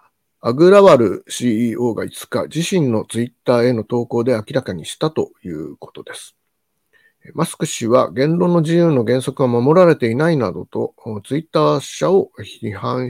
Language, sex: Japanese, male